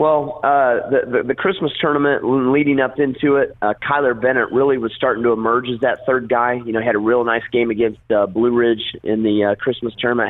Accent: American